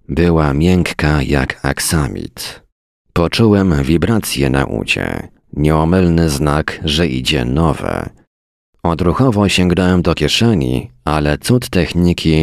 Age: 40-59